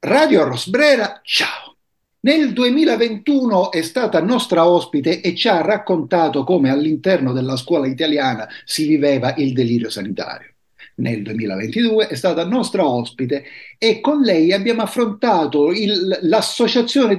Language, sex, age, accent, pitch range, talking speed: Italian, male, 60-79, native, 145-235 Hz, 120 wpm